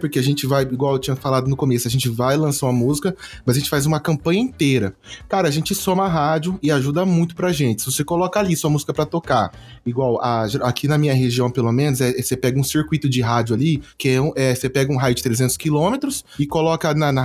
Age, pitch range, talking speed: 20-39, 135-190 Hz, 260 wpm